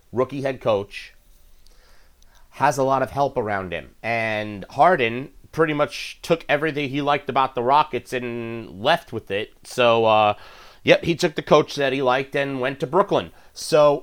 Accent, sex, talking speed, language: American, male, 170 wpm, English